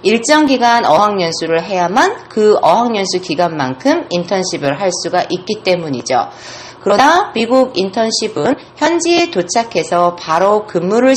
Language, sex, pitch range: Korean, female, 170-260 Hz